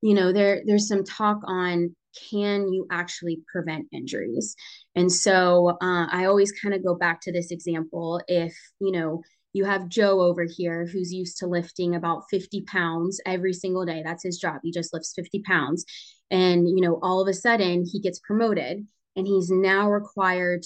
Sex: female